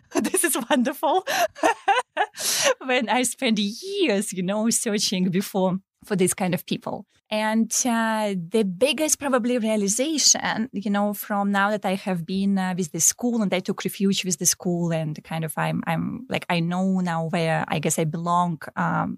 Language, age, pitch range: English, 20-39, 185-240 Hz